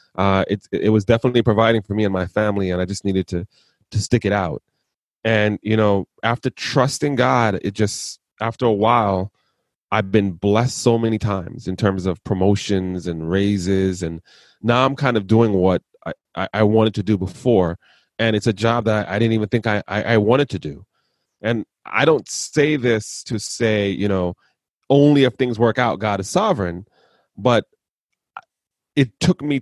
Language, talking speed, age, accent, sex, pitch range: English, 185 wpm, 30-49, American, male, 100-120 Hz